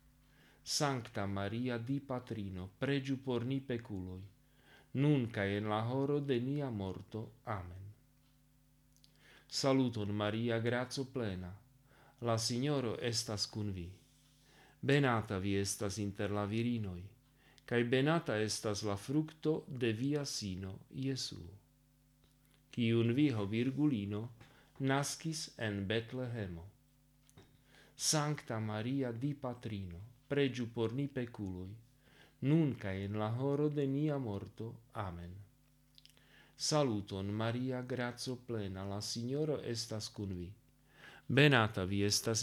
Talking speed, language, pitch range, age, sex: 100 wpm, Slovak, 105-135 Hz, 40-59, male